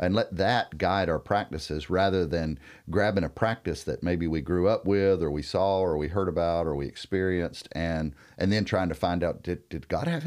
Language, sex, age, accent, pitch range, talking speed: English, male, 50-69, American, 80-100 Hz, 220 wpm